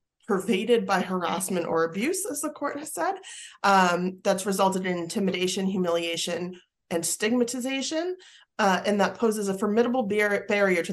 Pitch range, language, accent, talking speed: 170-205 Hz, English, American, 150 wpm